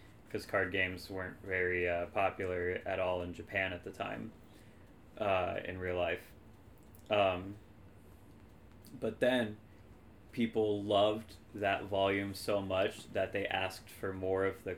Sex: male